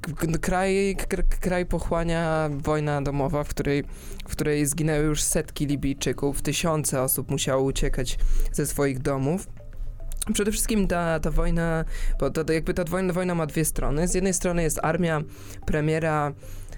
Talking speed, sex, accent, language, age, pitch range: 155 wpm, male, native, Polish, 20-39, 135-160 Hz